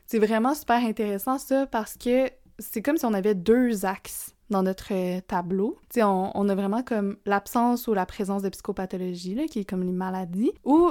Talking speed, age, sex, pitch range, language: 195 wpm, 20-39, female, 200-240 Hz, French